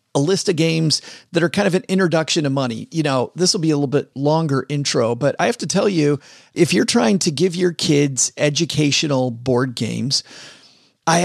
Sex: male